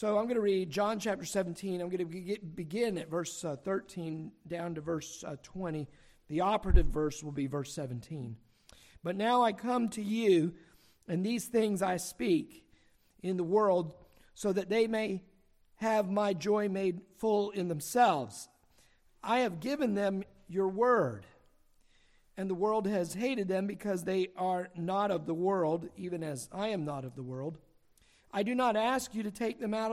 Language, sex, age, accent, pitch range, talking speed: English, male, 50-69, American, 165-210 Hz, 175 wpm